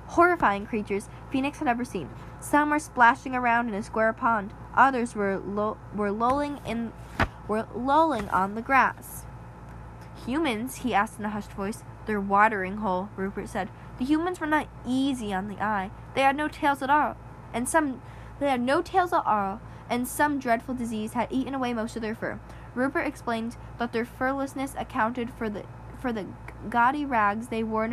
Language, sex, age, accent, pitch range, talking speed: English, female, 10-29, American, 210-275 Hz, 180 wpm